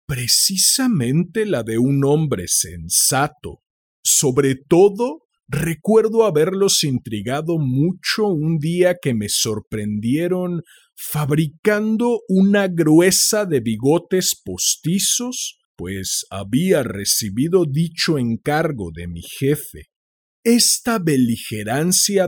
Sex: male